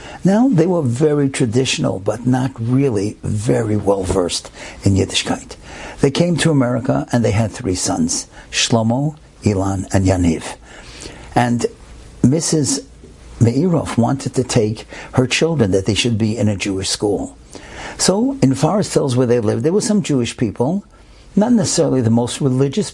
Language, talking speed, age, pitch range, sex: English, 150 wpm, 60-79, 110-145 Hz, male